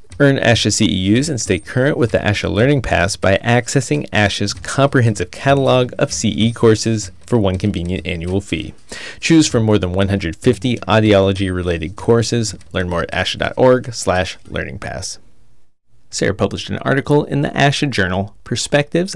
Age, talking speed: 30-49, 140 wpm